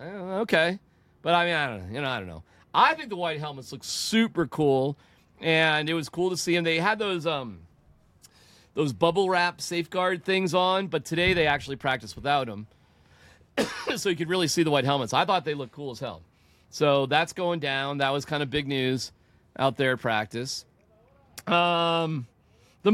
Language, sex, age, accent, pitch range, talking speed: English, male, 40-59, American, 135-175 Hz, 195 wpm